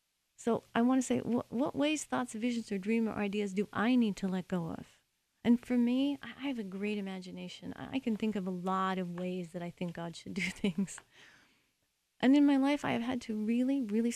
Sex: female